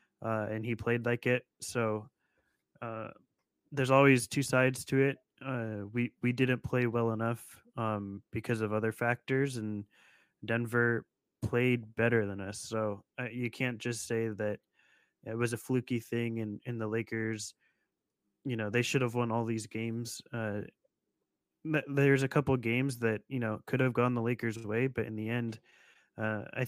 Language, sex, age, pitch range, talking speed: English, male, 20-39, 110-125 Hz, 175 wpm